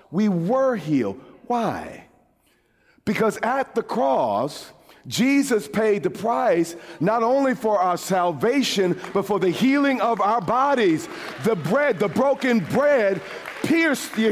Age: 40-59